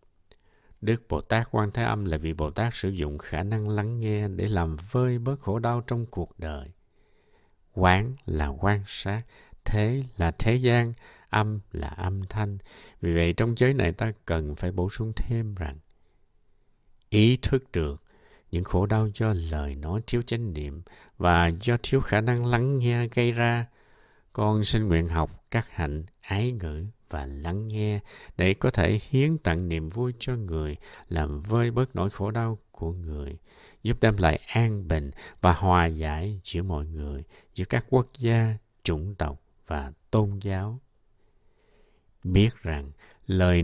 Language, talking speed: Vietnamese, 165 wpm